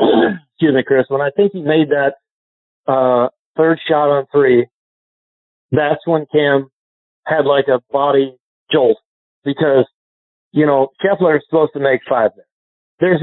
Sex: male